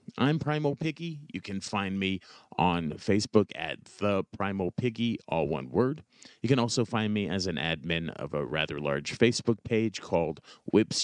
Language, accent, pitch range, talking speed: English, American, 95-125 Hz, 175 wpm